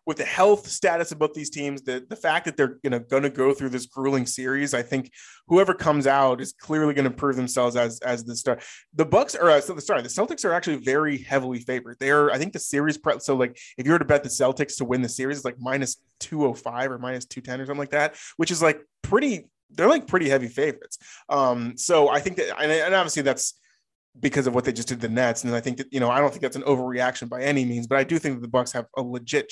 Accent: American